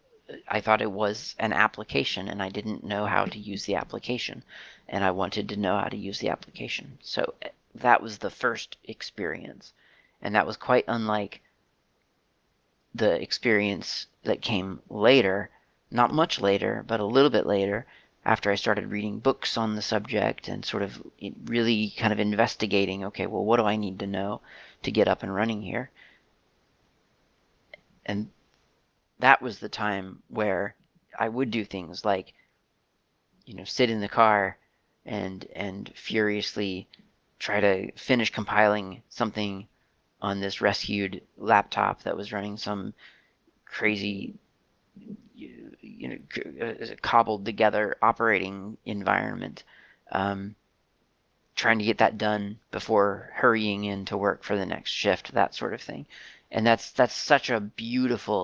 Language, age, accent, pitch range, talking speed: English, 40-59, American, 100-110 Hz, 150 wpm